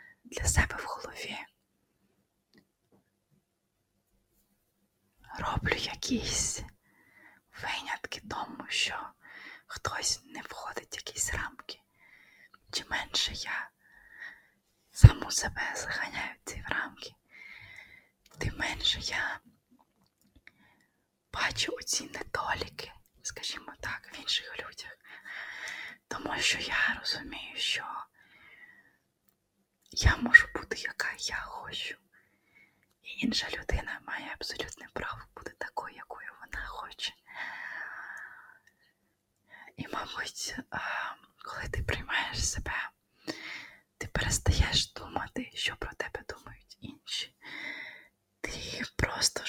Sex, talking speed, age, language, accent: female, 90 wpm, 20-39, Ukrainian, native